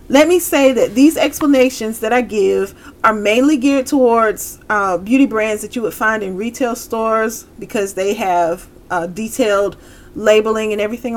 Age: 30-49